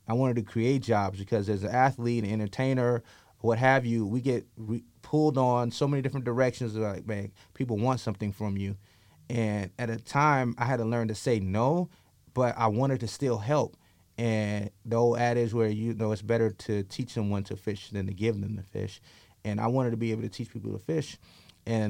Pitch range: 100-120 Hz